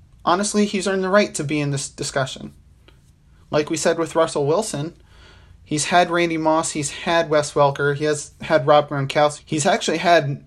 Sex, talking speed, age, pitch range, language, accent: male, 185 wpm, 30-49, 135-170 Hz, English, American